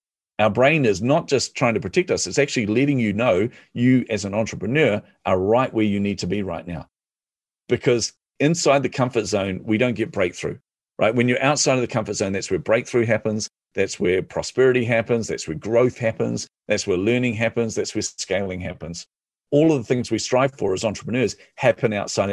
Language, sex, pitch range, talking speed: English, male, 100-125 Hz, 200 wpm